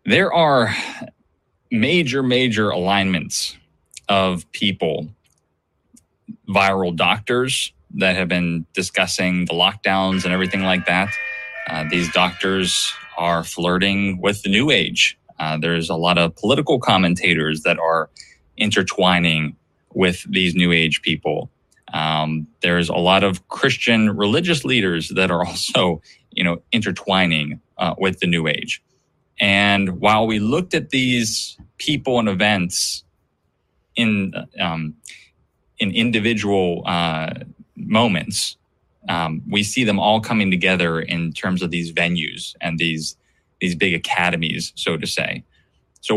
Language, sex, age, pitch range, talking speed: English, male, 20-39, 85-105 Hz, 125 wpm